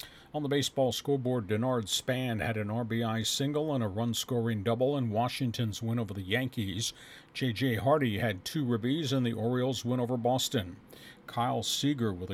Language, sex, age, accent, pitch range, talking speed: English, male, 50-69, American, 110-130 Hz, 170 wpm